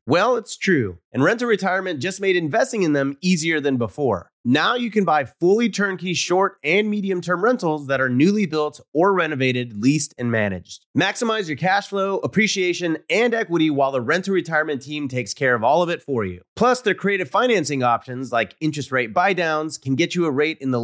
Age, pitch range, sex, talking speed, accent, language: 30-49, 125-180 Hz, male, 205 wpm, American, English